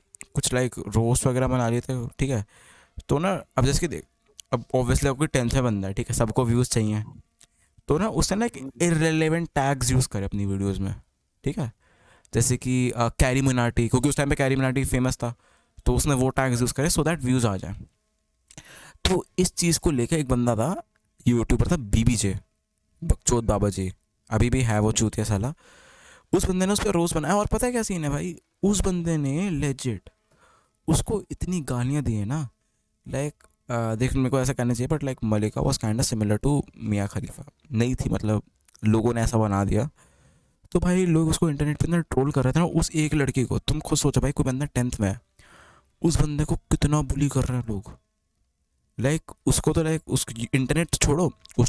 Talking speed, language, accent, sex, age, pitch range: 200 wpm, Hindi, native, male, 20-39, 115-145 Hz